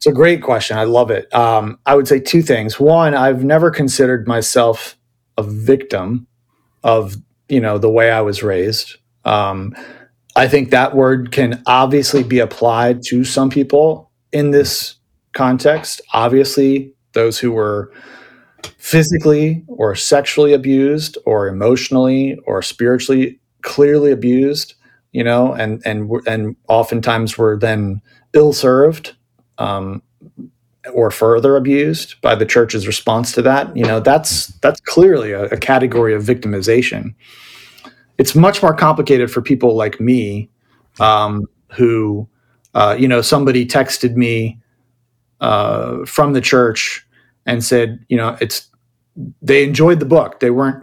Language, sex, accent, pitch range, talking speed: English, male, American, 115-135 Hz, 140 wpm